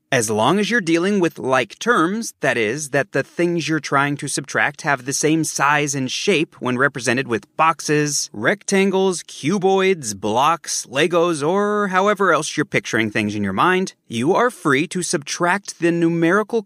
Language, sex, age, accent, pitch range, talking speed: English, male, 30-49, American, 140-190 Hz, 170 wpm